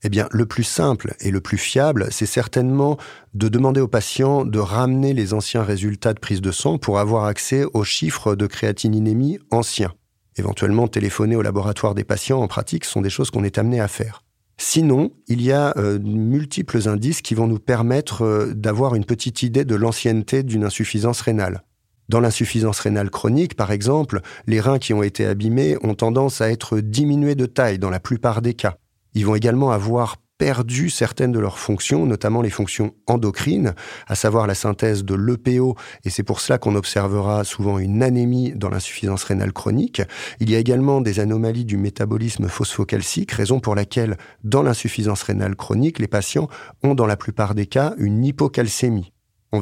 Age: 40-59